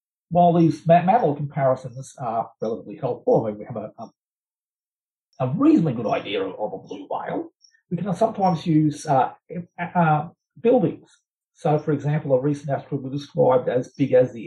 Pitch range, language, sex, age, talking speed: 135-170 Hz, English, male, 50-69, 170 wpm